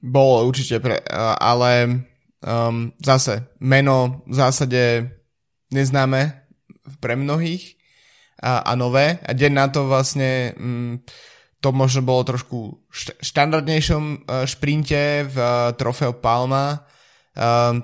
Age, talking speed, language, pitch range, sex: 20-39, 115 wpm, Slovak, 125-140 Hz, male